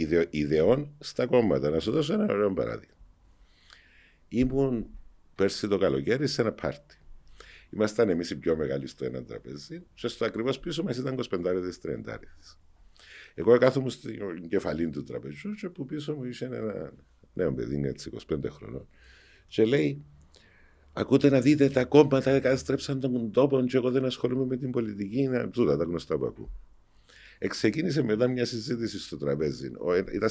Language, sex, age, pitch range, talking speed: Greek, male, 50-69, 80-130 Hz, 160 wpm